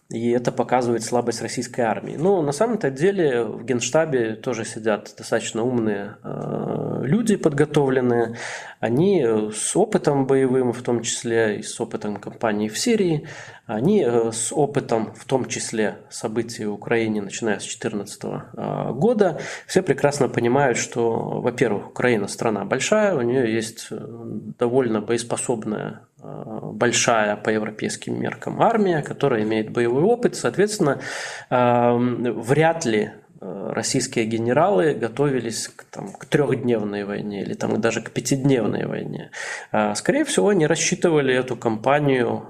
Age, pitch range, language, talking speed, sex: 20-39, 115-145 Hz, Russian, 125 wpm, male